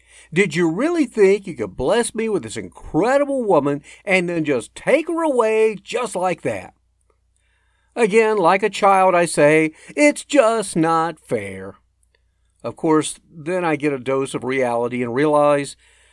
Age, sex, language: 50-69, male, English